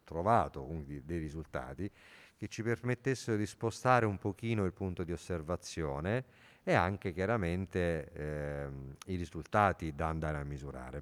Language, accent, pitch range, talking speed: Italian, native, 80-105 Hz, 135 wpm